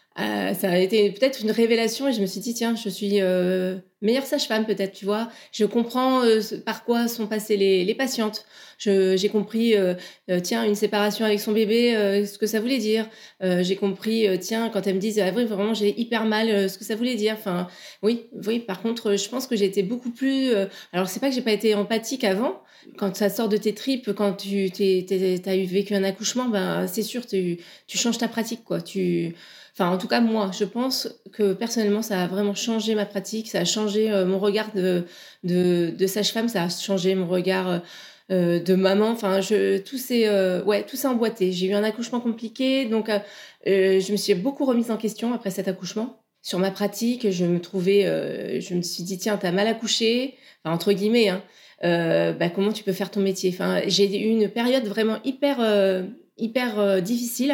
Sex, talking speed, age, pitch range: female, 215 wpm, 30-49, 190-230 Hz